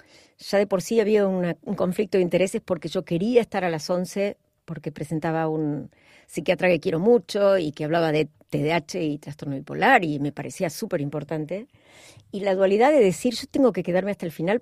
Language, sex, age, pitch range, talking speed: Spanish, female, 50-69, 155-205 Hz, 200 wpm